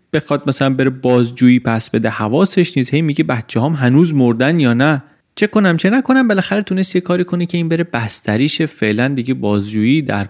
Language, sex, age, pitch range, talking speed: Persian, male, 30-49, 125-160 Hz, 180 wpm